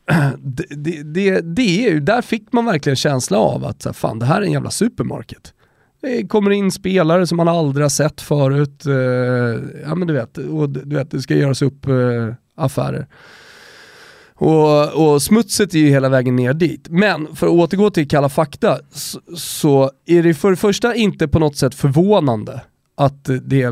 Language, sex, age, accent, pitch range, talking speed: Swedish, male, 20-39, native, 125-165 Hz, 175 wpm